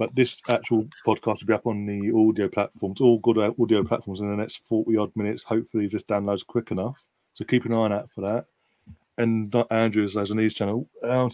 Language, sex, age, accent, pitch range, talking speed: English, male, 30-49, British, 105-120 Hz, 215 wpm